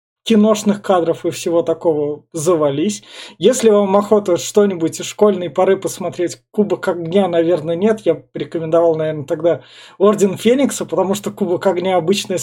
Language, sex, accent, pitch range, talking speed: Russian, male, native, 165-200 Hz, 145 wpm